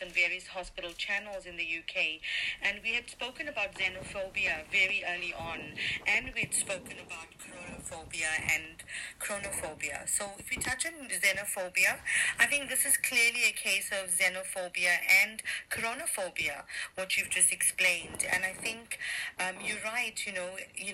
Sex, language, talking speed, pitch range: female, English, 150 wpm, 180-210 Hz